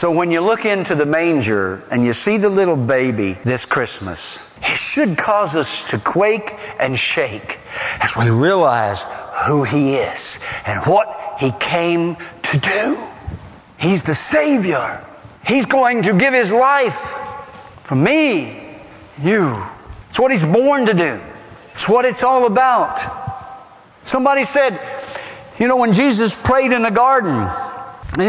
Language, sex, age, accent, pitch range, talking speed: English, male, 60-79, American, 160-265 Hz, 150 wpm